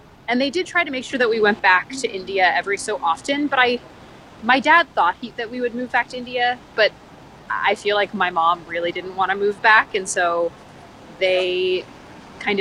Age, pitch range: 20-39, 180-245 Hz